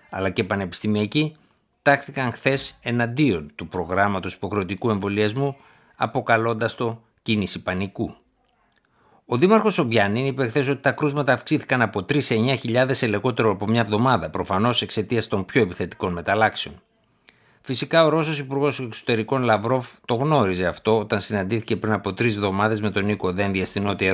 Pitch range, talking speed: 100-130 Hz, 145 wpm